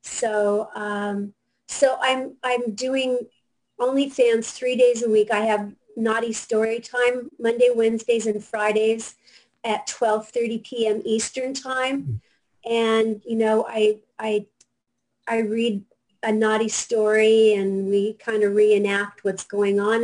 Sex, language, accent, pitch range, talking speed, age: female, English, American, 210-240 Hz, 130 wpm, 40-59